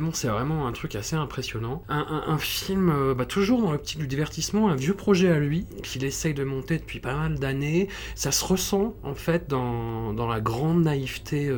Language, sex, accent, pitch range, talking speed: French, male, French, 115-155 Hz, 220 wpm